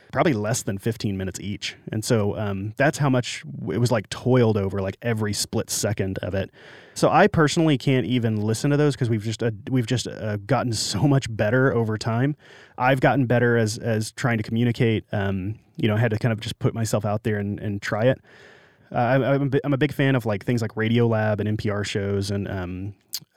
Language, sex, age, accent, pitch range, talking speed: English, male, 30-49, American, 100-125 Hz, 220 wpm